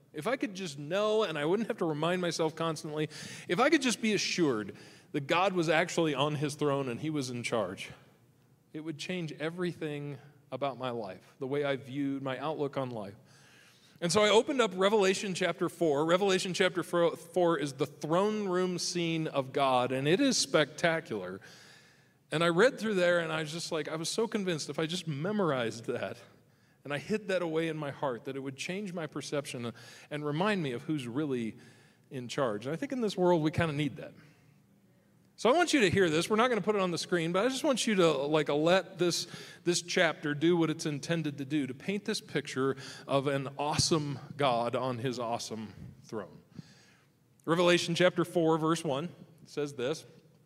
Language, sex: English, male